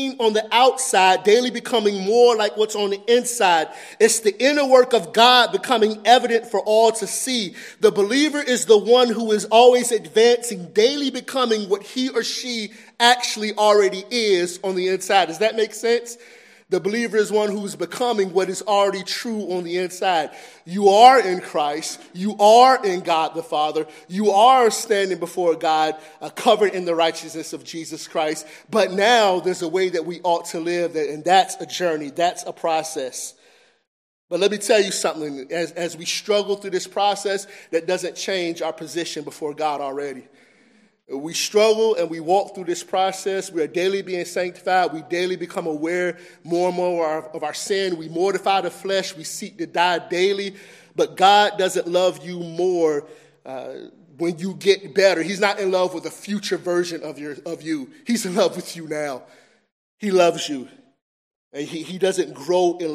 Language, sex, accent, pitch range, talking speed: English, male, American, 165-220 Hz, 185 wpm